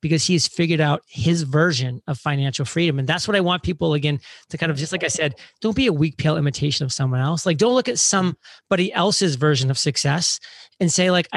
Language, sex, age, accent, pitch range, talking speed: English, male, 30-49, American, 145-180 Hz, 230 wpm